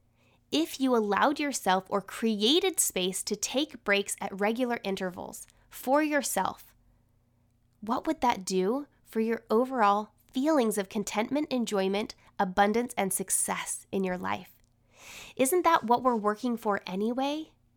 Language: English